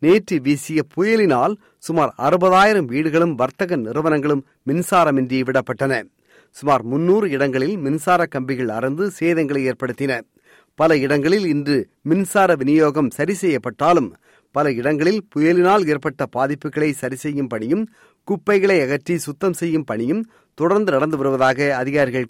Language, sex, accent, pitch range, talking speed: Tamil, male, native, 135-165 Hz, 110 wpm